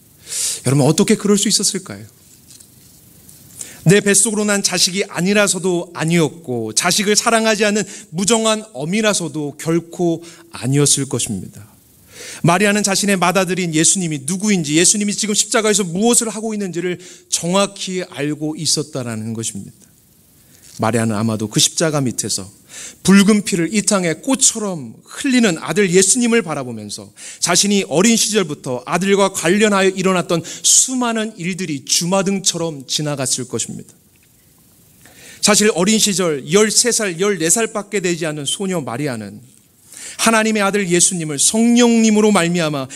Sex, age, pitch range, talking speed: male, 30-49, 150-210 Hz, 100 wpm